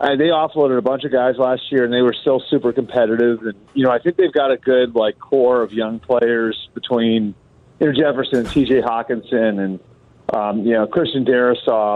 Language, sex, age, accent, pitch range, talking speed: English, male, 40-59, American, 110-140 Hz, 205 wpm